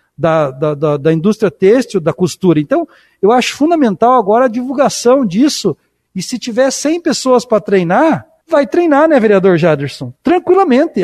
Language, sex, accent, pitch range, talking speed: Portuguese, male, Brazilian, 195-275 Hz, 150 wpm